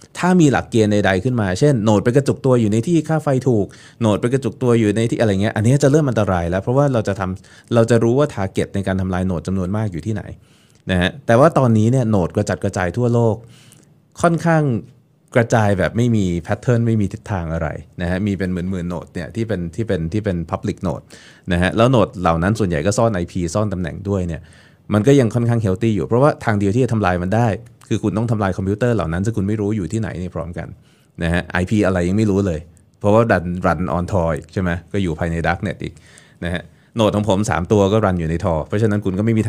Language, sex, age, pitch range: Thai, male, 20-39, 90-120 Hz